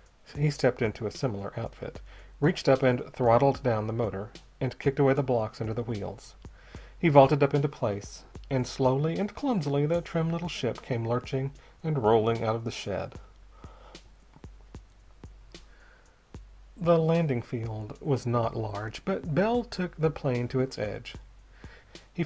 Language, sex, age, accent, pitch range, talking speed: English, male, 40-59, American, 115-155 Hz, 155 wpm